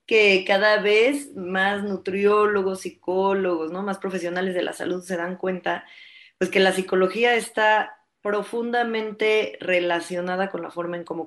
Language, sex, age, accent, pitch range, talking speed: Spanish, female, 20-39, Mexican, 175-220 Hz, 135 wpm